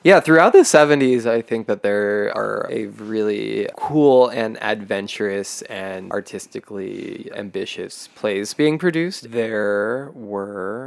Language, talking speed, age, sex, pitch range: English, 120 wpm, 20-39, male, 100-115 Hz